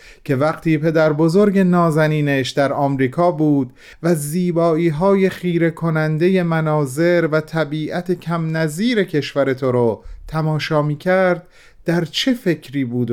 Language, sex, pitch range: Persian, male, 150-195 Hz